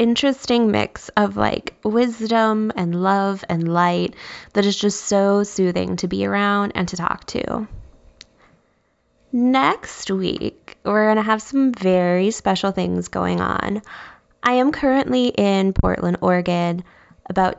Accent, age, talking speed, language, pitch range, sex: American, 10-29, 135 wpm, English, 175-230 Hz, female